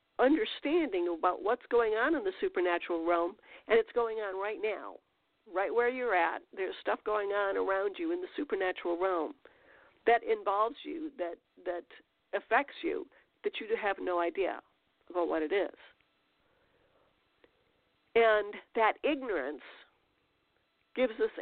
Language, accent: English, American